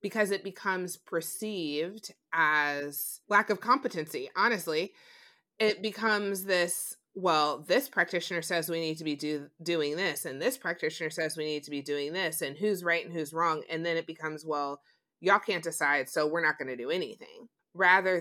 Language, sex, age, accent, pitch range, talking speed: English, female, 30-49, American, 155-195 Hz, 180 wpm